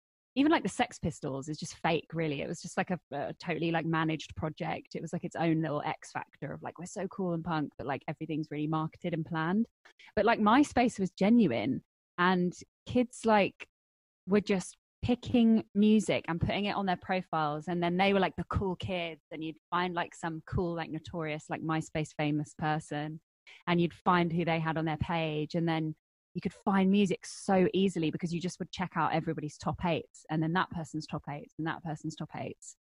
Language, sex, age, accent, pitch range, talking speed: English, female, 20-39, British, 155-190 Hz, 210 wpm